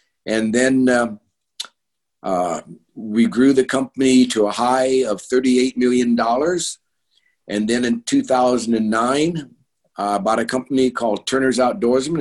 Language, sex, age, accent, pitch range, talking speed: English, male, 60-79, American, 110-130 Hz, 125 wpm